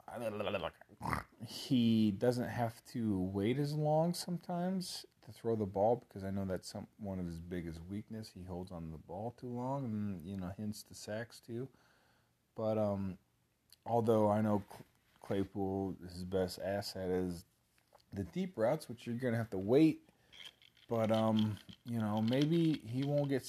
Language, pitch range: English, 95-120 Hz